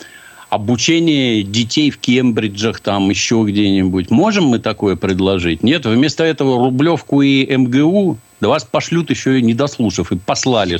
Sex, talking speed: male, 145 wpm